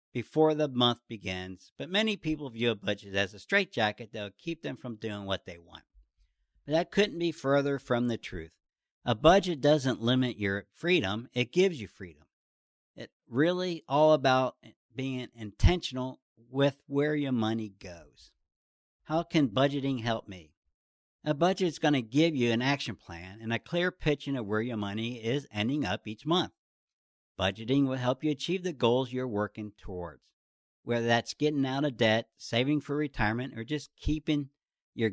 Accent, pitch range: American, 105-150 Hz